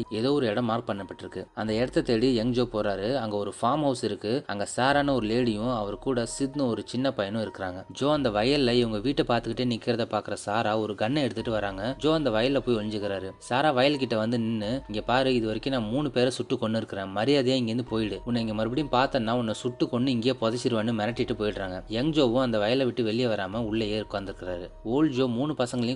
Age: 20-39